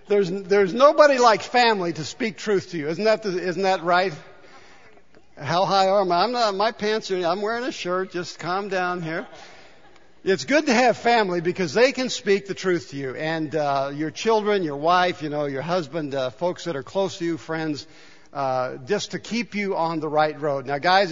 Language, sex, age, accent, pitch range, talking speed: English, male, 60-79, American, 155-210 Hz, 215 wpm